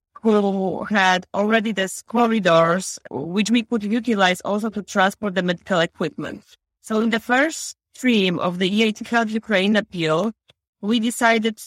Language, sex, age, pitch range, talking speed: English, female, 20-39, 195-230 Hz, 145 wpm